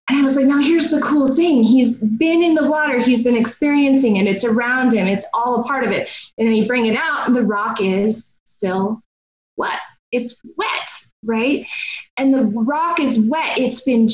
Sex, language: female, English